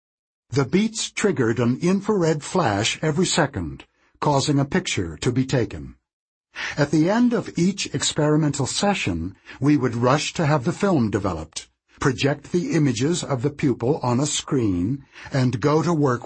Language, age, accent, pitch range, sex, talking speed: English, 60-79, American, 110-155 Hz, male, 155 wpm